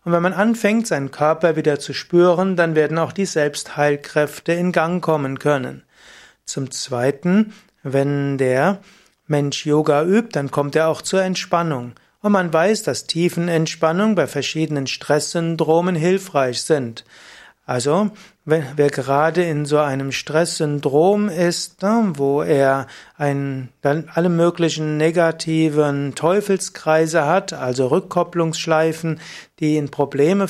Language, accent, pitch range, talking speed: German, German, 145-175 Hz, 125 wpm